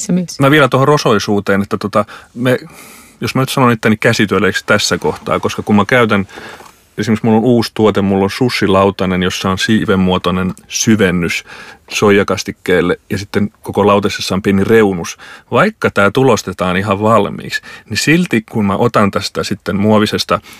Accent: native